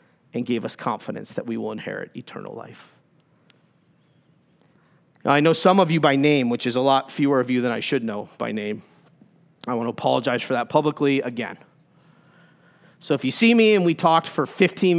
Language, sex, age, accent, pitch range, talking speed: English, male, 40-59, American, 140-170 Hz, 195 wpm